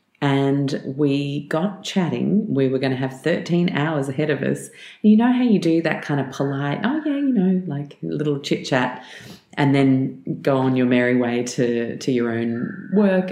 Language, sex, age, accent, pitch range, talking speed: English, female, 30-49, Australian, 125-165 Hz, 195 wpm